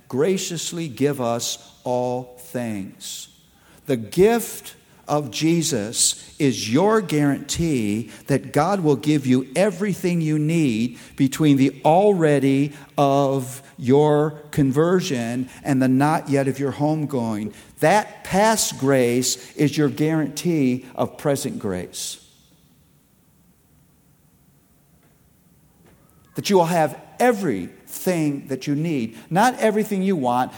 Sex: male